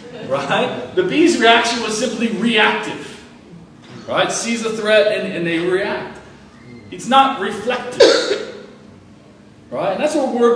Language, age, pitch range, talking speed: English, 40-59, 185-240 Hz, 130 wpm